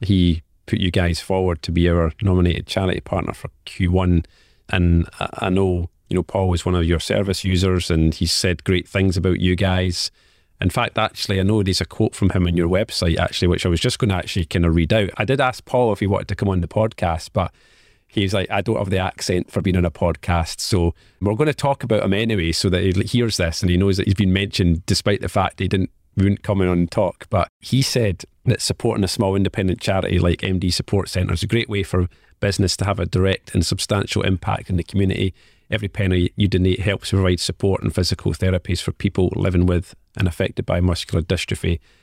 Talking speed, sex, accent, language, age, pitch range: 235 wpm, male, British, English, 30-49, 85-100 Hz